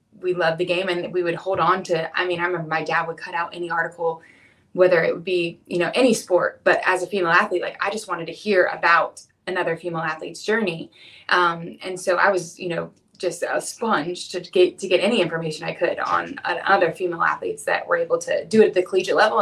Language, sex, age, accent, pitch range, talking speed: English, female, 20-39, American, 170-200 Hz, 240 wpm